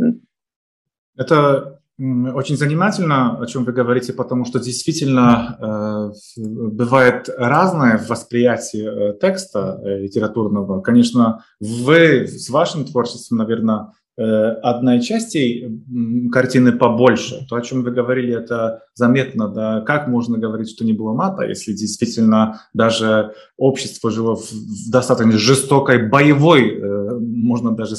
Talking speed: 110 wpm